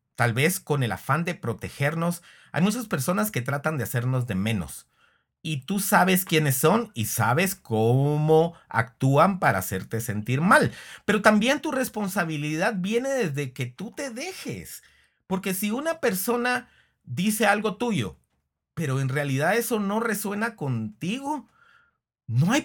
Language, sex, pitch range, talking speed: Spanish, male, 125-215 Hz, 145 wpm